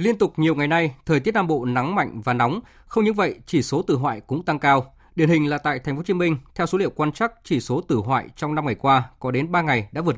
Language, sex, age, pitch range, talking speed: Vietnamese, male, 20-39, 125-170 Hz, 300 wpm